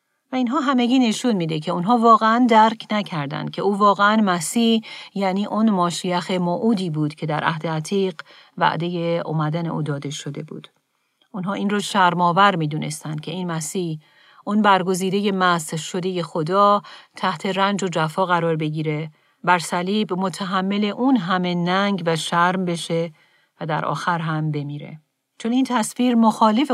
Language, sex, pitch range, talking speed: Persian, female, 165-200 Hz, 150 wpm